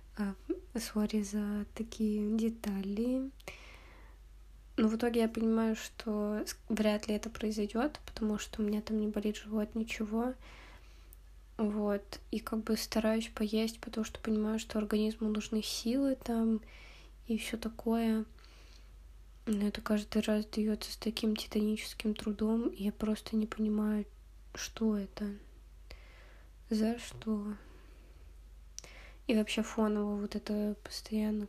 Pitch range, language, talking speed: 205-225 Hz, Russian, 125 wpm